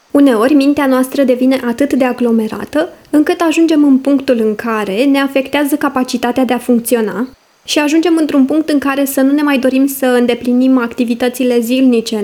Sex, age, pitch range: female, 20-39, 230-290 Hz